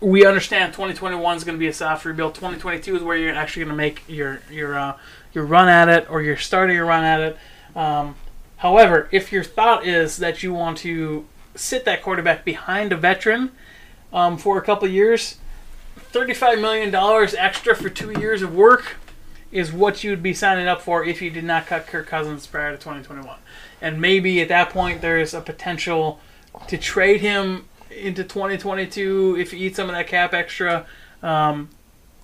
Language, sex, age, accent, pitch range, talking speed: English, male, 20-39, American, 160-190 Hz, 190 wpm